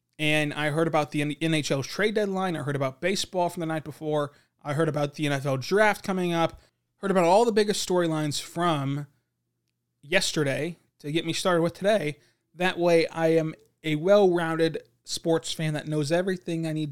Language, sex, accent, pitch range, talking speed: English, male, American, 135-165 Hz, 180 wpm